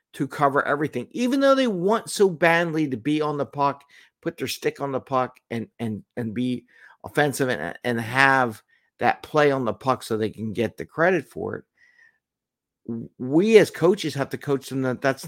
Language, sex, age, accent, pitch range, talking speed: English, male, 50-69, American, 120-165 Hz, 195 wpm